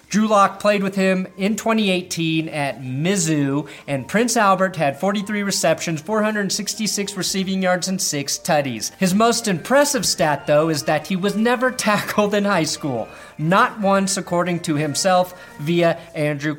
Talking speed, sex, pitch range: 150 wpm, male, 145-195 Hz